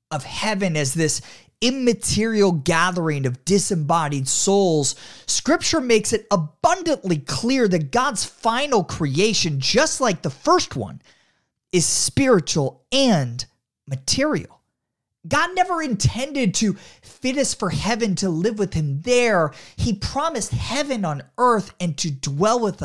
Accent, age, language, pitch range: American, 30-49, English, 140-230 Hz